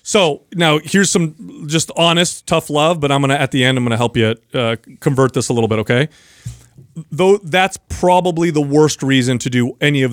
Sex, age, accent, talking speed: male, 30-49, American, 220 wpm